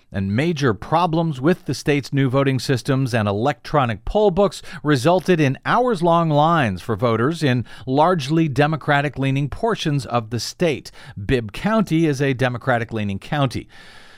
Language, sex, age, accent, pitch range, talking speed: English, male, 50-69, American, 115-165 Hz, 135 wpm